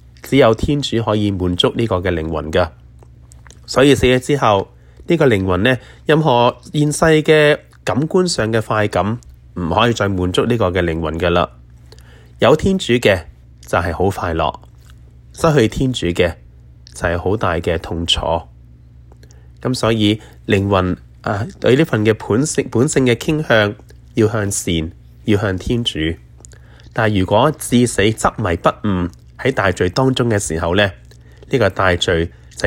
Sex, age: male, 20-39